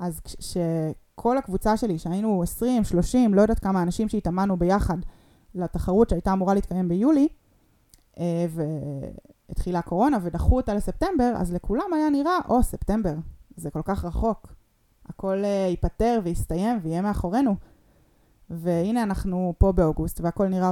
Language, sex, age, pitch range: Hebrew, female, 20-39, 165-210 Hz